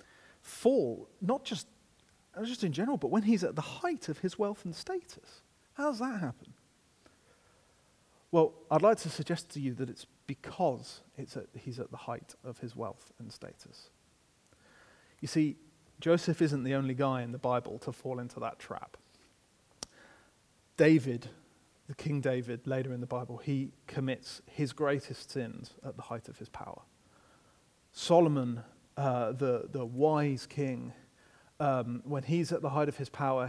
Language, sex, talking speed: English, male, 160 wpm